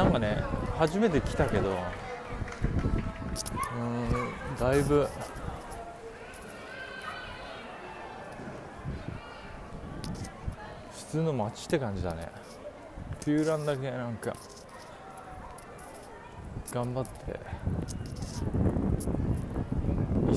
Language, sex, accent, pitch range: Japanese, male, native, 95-125 Hz